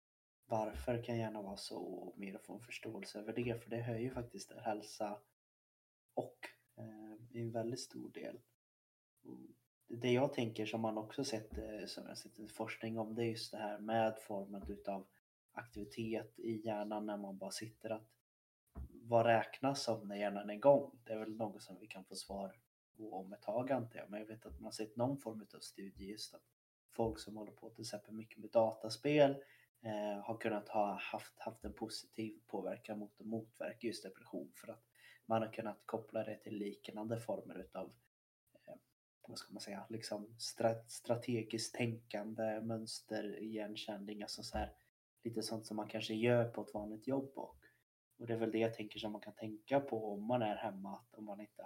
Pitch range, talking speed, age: 105-115 Hz, 195 wpm, 30-49